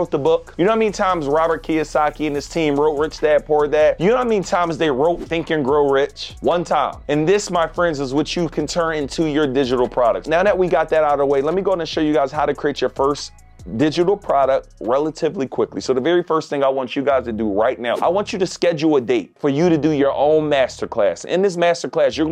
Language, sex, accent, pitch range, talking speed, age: English, male, American, 145-170 Hz, 275 wpm, 30-49